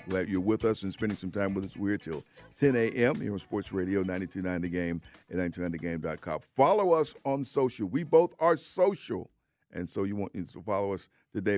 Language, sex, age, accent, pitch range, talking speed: English, male, 50-69, American, 90-110 Hz, 205 wpm